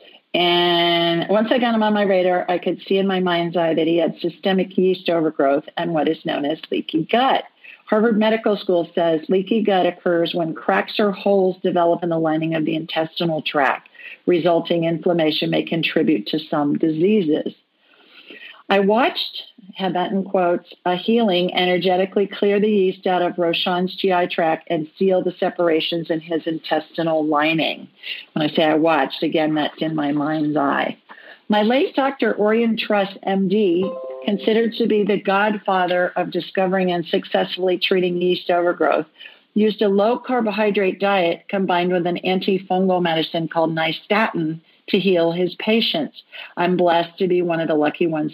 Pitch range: 165-200 Hz